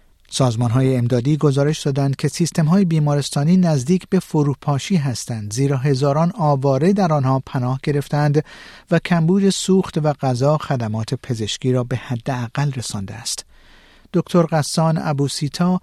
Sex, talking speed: male, 130 wpm